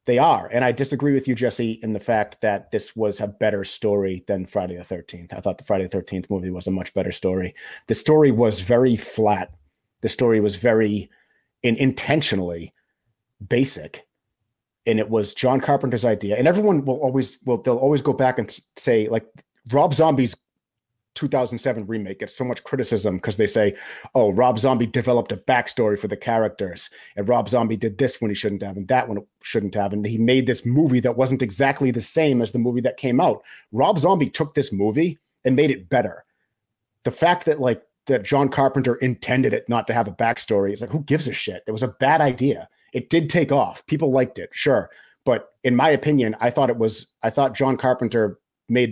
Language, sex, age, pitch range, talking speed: English, male, 30-49, 105-135 Hz, 205 wpm